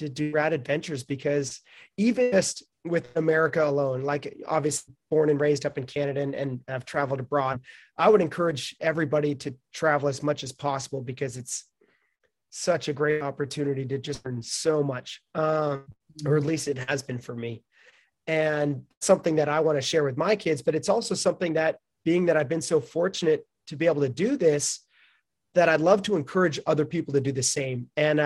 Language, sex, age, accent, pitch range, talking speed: English, male, 30-49, American, 140-170 Hz, 195 wpm